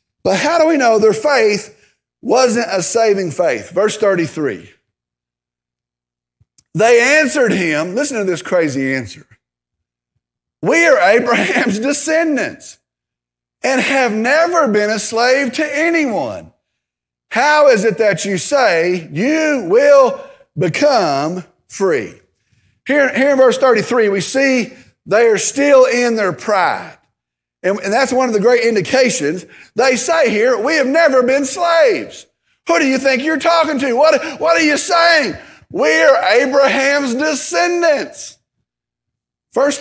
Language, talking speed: English, 130 wpm